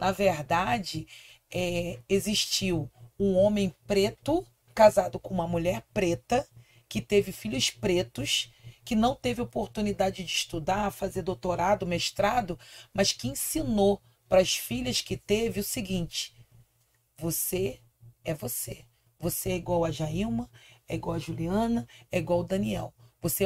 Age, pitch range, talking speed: 40-59, 125-205 Hz, 135 wpm